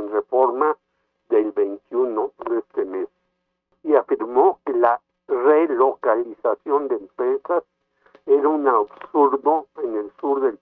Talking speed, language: 115 wpm, Spanish